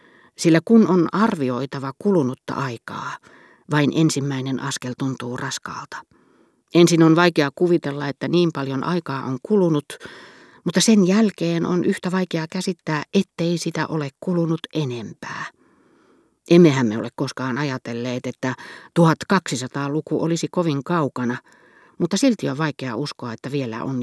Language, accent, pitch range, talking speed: Finnish, native, 135-175 Hz, 125 wpm